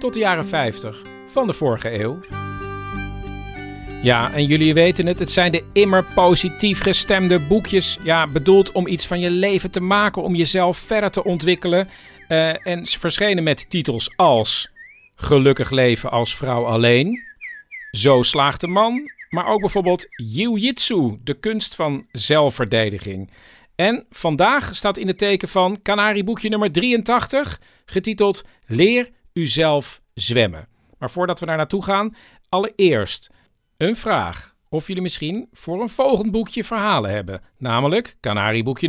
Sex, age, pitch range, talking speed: male, 50-69, 130-205 Hz, 145 wpm